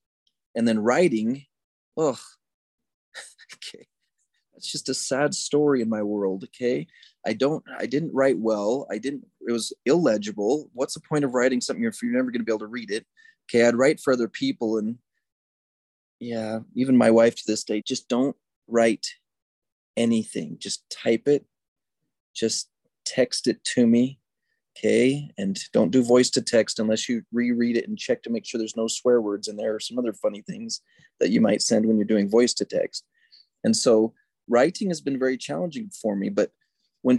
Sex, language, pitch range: male, English, 115-145 Hz